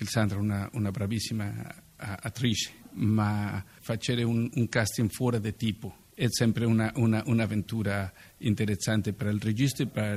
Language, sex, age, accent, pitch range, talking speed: Italian, male, 50-69, Mexican, 105-115 Hz, 140 wpm